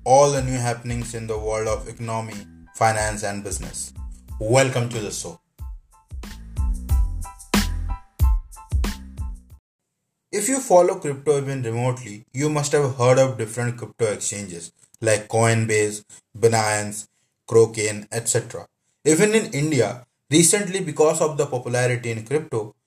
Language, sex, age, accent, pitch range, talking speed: English, male, 20-39, Indian, 110-150 Hz, 120 wpm